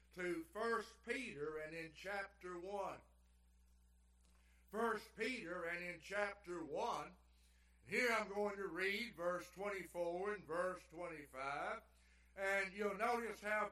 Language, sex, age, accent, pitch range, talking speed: English, male, 60-79, American, 155-215 Hz, 120 wpm